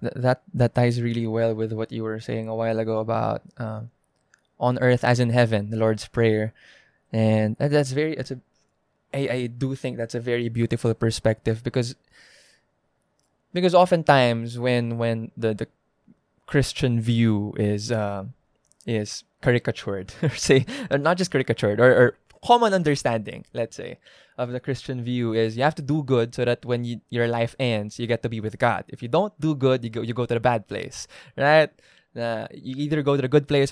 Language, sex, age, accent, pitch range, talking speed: English, male, 20-39, Filipino, 115-140 Hz, 185 wpm